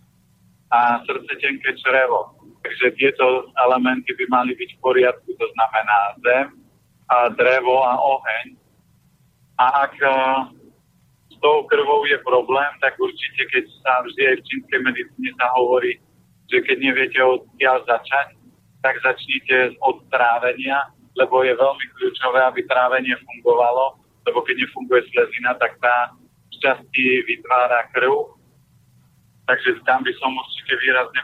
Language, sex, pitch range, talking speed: Slovak, male, 125-180 Hz, 130 wpm